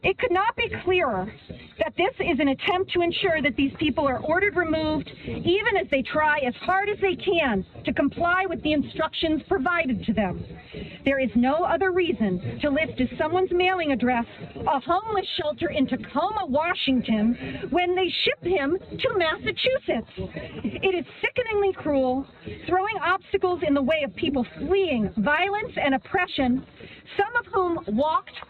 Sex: female